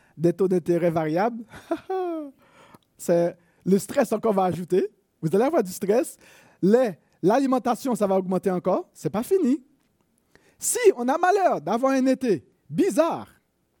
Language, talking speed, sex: French, 140 wpm, male